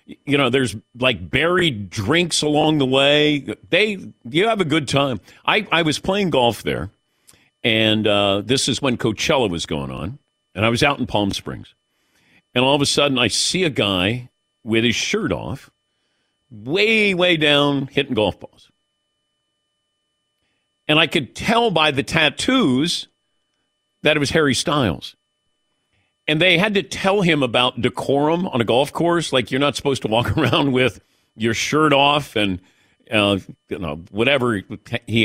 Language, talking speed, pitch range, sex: English, 165 wpm, 100-150 Hz, male